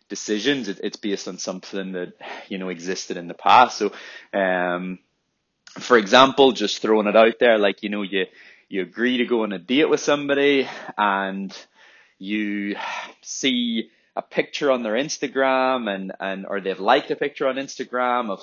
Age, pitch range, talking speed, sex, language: 20-39, 100-130 Hz, 170 wpm, male, English